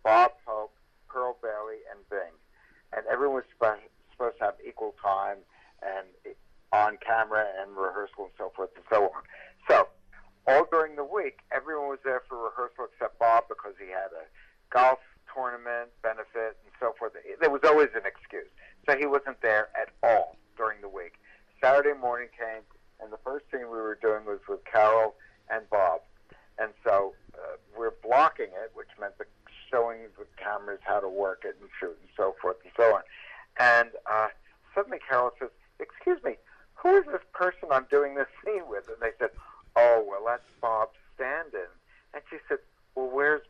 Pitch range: 110-155 Hz